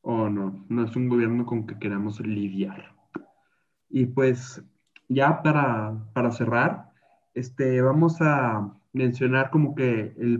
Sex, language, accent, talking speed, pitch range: male, Spanish, Mexican, 140 wpm, 120-160 Hz